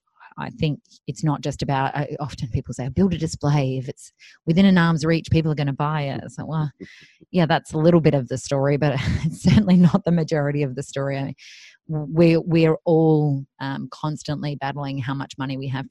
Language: English